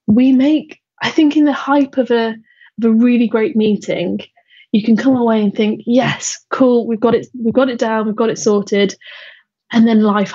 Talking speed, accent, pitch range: 210 wpm, British, 205-245 Hz